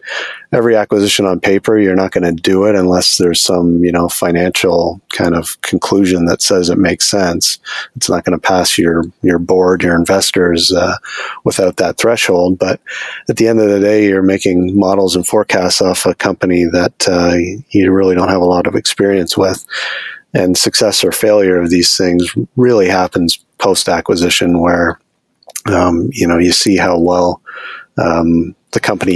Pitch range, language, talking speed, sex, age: 85-95 Hz, English, 175 wpm, male, 40-59